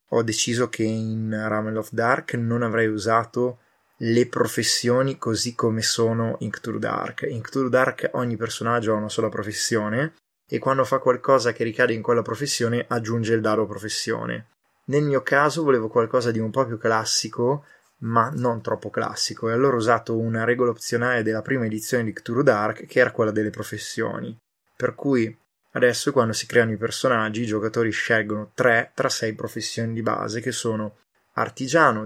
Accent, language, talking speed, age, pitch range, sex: native, Italian, 170 wpm, 20-39, 110-125 Hz, male